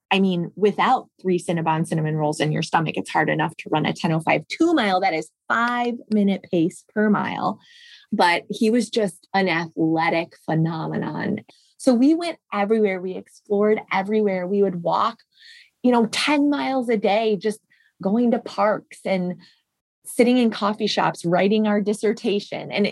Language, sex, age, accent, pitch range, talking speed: English, female, 20-39, American, 180-215 Hz, 160 wpm